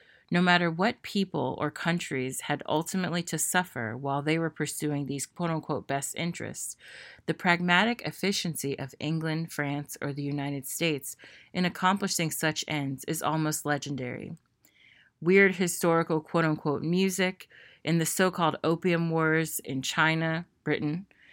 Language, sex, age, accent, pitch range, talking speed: English, female, 30-49, American, 150-180 Hz, 130 wpm